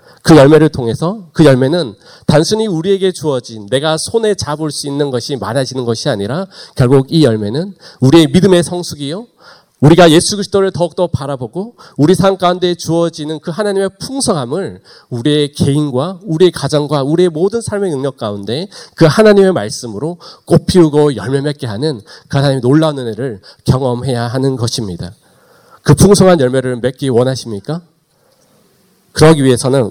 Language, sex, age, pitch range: Korean, male, 40-59, 120-160 Hz